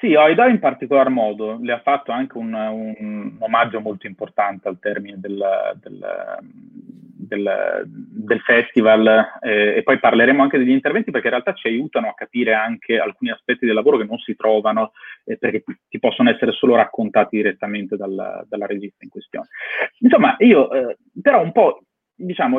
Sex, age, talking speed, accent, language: male, 30-49, 165 wpm, native, Italian